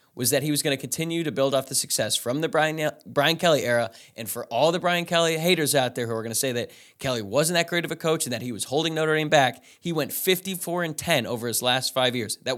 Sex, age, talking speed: male, 20-39, 275 wpm